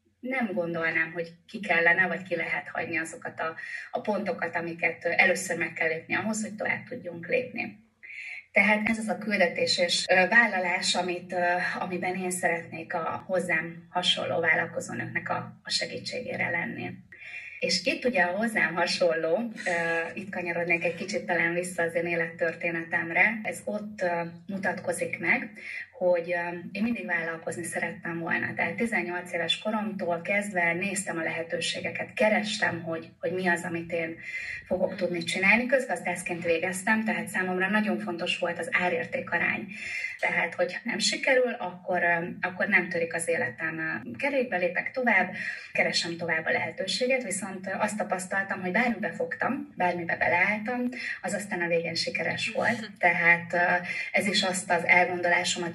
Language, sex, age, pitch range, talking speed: Hungarian, female, 20-39, 170-195 Hz, 140 wpm